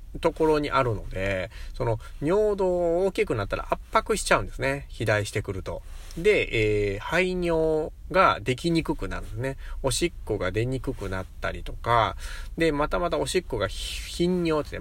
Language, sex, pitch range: Japanese, male, 95-150 Hz